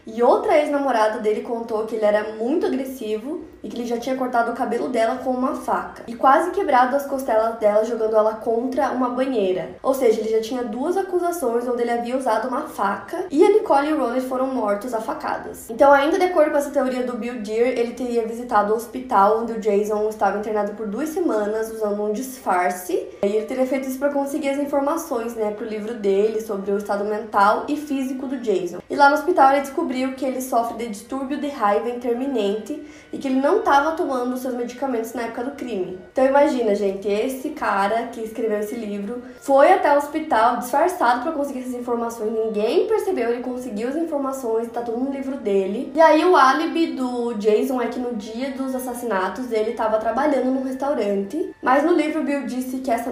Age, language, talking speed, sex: 10-29, Portuguese, 205 wpm, female